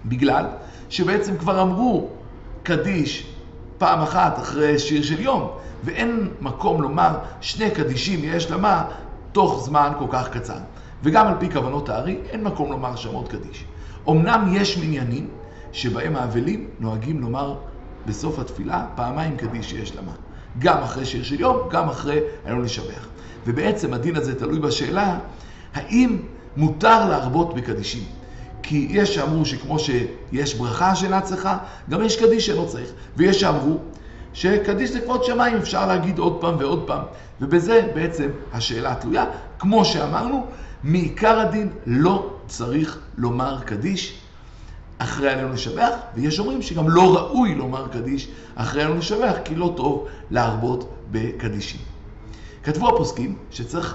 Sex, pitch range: male, 120-185 Hz